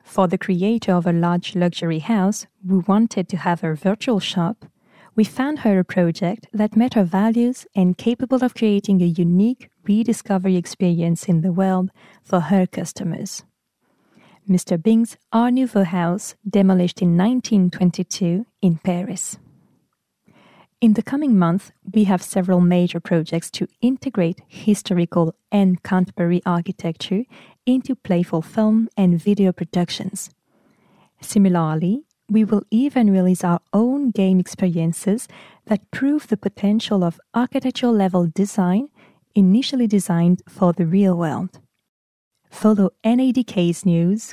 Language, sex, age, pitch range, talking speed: French, female, 30-49, 180-215 Hz, 130 wpm